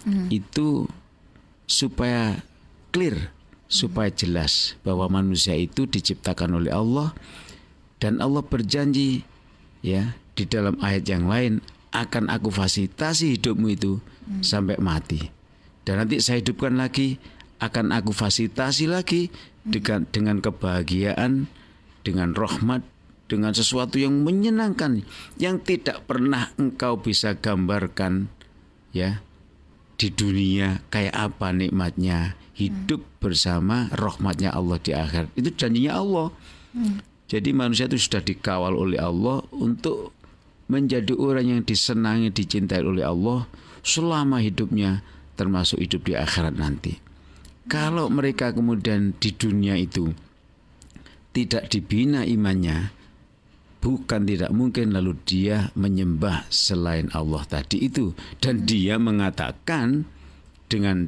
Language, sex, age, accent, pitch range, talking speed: Indonesian, male, 50-69, native, 90-120 Hz, 110 wpm